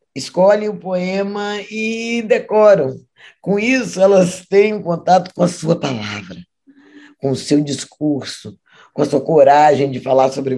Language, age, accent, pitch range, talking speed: Portuguese, 20-39, Brazilian, 135-180 Hz, 140 wpm